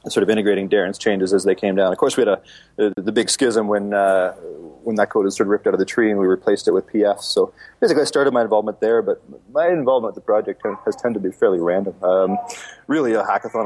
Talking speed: 265 wpm